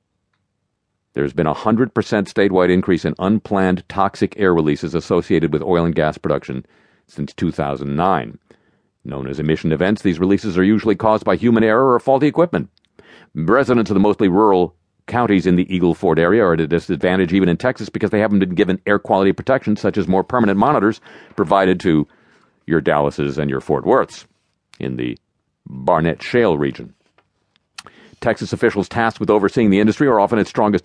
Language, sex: English, male